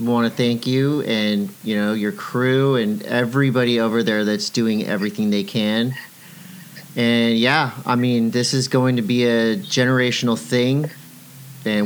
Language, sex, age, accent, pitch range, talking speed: English, male, 40-59, American, 115-140 Hz, 155 wpm